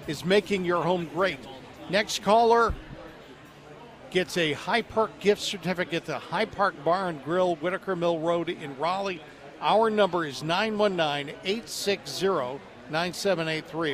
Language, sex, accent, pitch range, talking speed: English, male, American, 165-210 Hz, 115 wpm